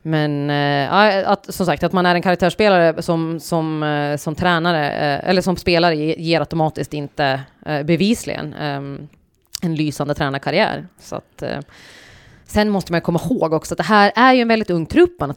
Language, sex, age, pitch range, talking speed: Swedish, female, 20-39, 150-180 Hz, 180 wpm